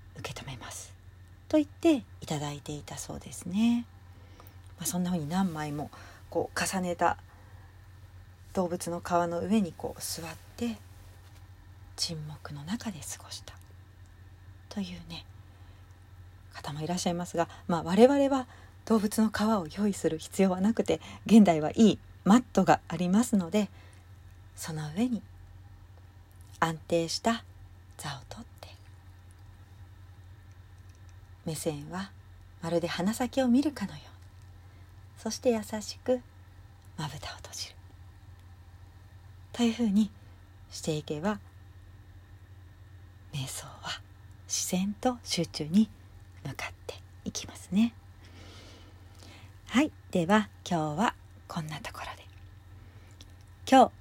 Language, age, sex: Japanese, 40-59, female